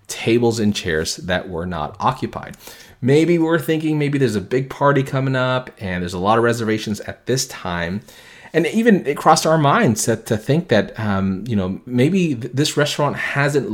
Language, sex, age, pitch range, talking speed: English, male, 30-49, 105-140 Hz, 190 wpm